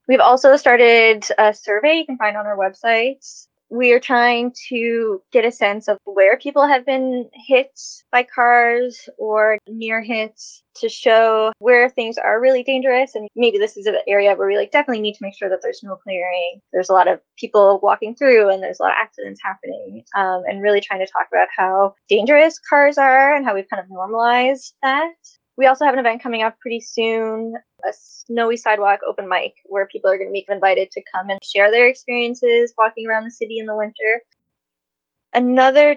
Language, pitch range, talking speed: English, 205-255 Hz, 200 wpm